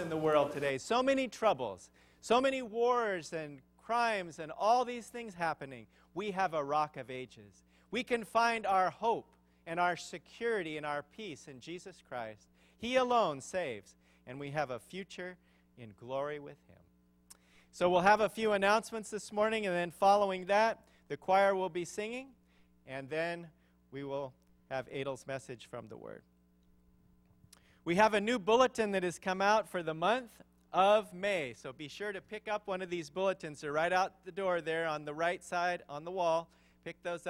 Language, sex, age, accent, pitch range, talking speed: English, male, 40-59, American, 140-200 Hz, 185 wpm